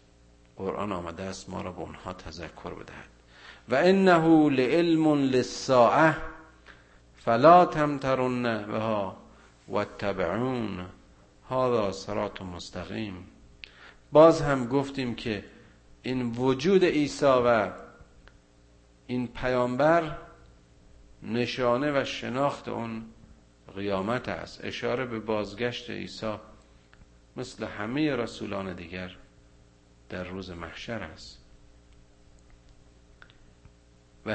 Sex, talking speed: male, 85 wpm